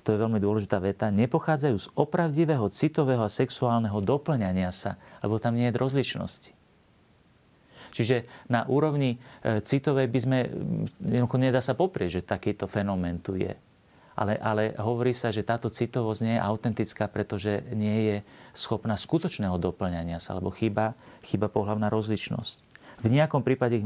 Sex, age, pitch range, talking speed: male, 40-59, 105-130 Hz, 150 wpm